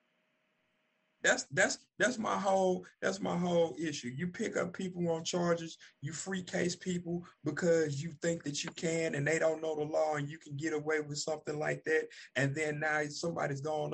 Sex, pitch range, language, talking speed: male, 130-165 Hz, English, 195 wpm